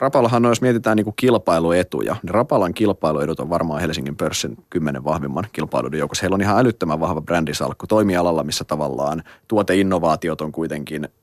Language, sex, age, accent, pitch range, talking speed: Finnish, male, 30-49, native, 80-110 Hz, 155 wpm